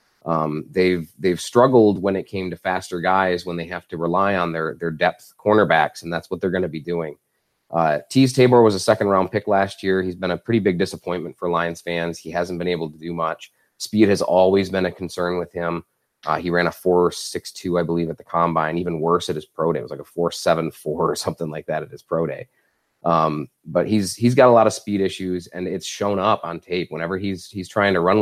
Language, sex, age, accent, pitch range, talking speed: English, male, 30-49, American, 85-105 Hz, 250 wpm